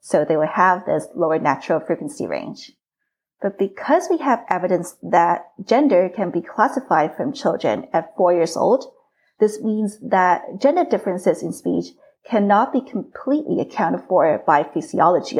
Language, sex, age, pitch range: English, female, 30-49, 175-260 Hz